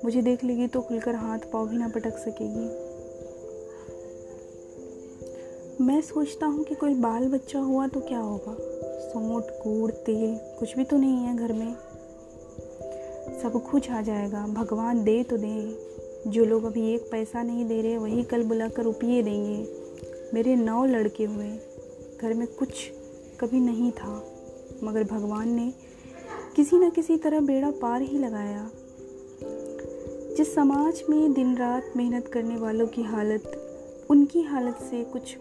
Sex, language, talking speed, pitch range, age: female, Hindi, 150 wpm, 175-250 Hz, 20-39